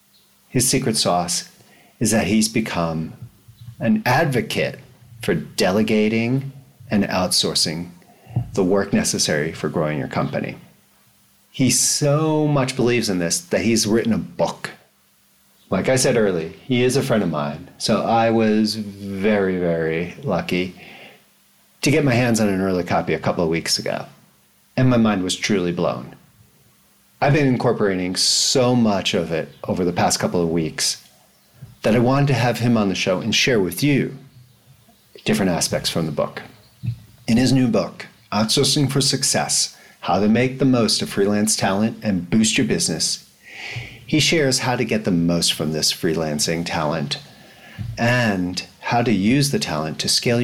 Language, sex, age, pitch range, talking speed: English, male, 40-59, 90-125 Hz, 160 wpm